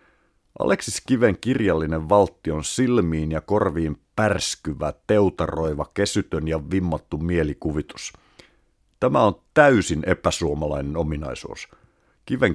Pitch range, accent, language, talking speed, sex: 80-100 Hz, native, Finnish, 95 wpm, male